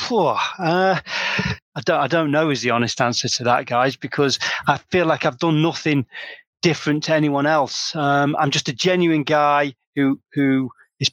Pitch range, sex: 135-170 Hz, male